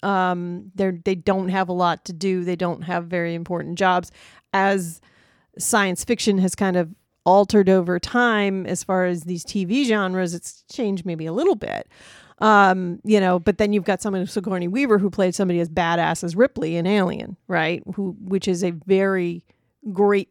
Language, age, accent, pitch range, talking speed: English, 40-59, American, 180-205 Hz, 185 wpm